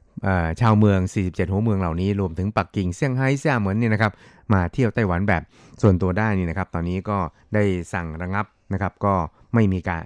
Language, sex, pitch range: Thai, male, 90-110 Hz